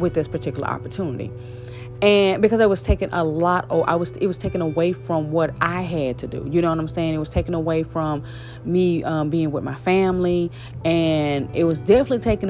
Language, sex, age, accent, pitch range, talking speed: English, female, 30-49, American, 150-195 Hz, 215 wpm